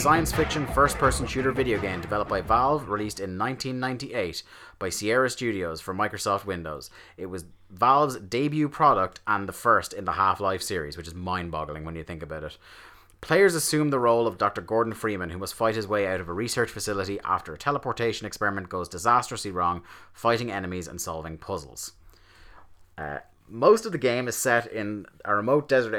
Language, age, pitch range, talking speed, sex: English, 30-49, 95-120 Hz, 185 wpm, male